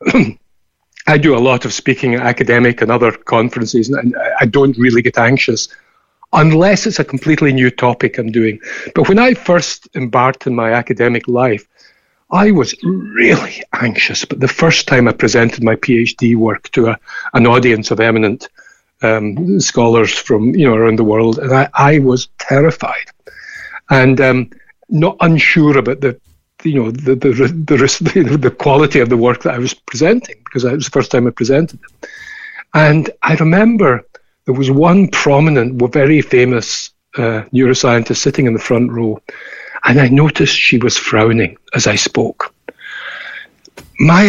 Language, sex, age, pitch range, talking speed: English, male, 60-79, 120-160 Hz, 165 wpm